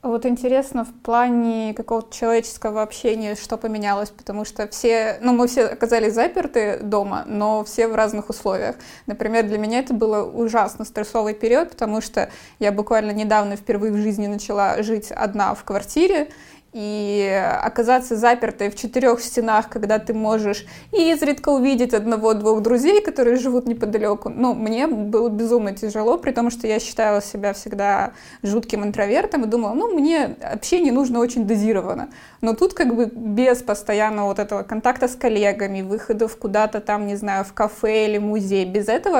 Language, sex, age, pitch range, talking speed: Russian, female, 20-39, 210-240 Hz, 160 wpm